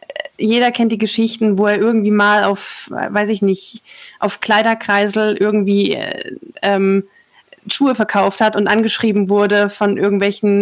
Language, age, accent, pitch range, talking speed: German, 20-39, German, 190-215 Hz, 140 wpm